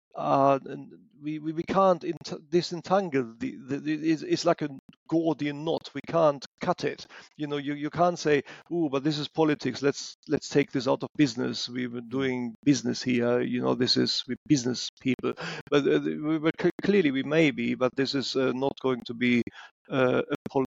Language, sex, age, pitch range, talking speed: English, male, 40-59, 130-180 Hz, 205 wpm